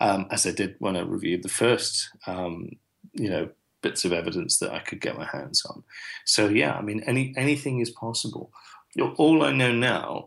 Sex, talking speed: male, 200 wpm